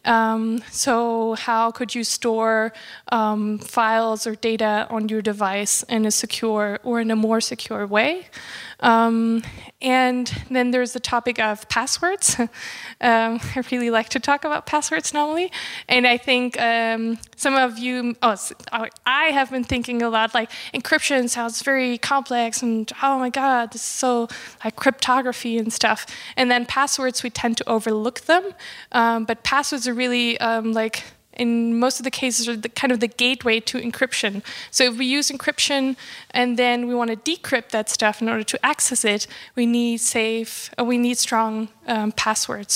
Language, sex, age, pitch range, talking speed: English, female, 20-39, 225-250 Hz, 170 wpm